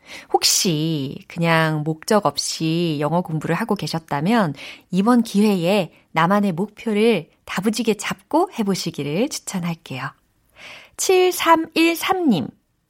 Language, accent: Korean, native